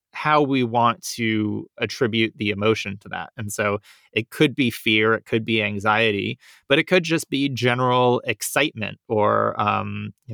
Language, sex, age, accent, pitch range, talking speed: English, male, 20-39, American, 105-125 Hz, 170 wpm